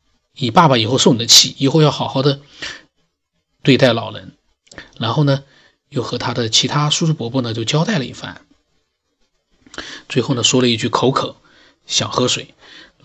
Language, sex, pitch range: Chinese, male, 120-155 Hz